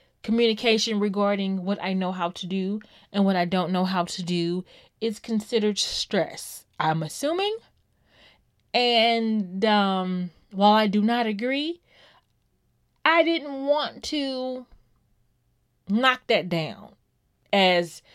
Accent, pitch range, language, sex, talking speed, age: American, 185-260 Hz, English, female, 120 wpm, 20-39